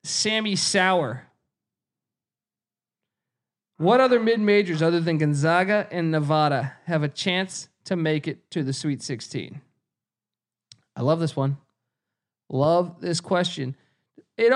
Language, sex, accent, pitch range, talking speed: English, male, American, 130-170 Hz, 115 wpm